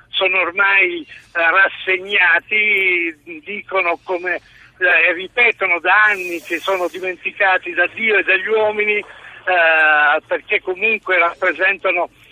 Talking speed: 105 wpm